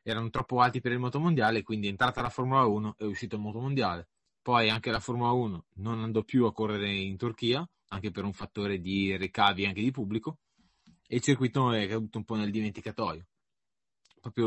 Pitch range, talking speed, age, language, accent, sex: 105-130 Hz, 205 wpm, 20-39, Italian, native, male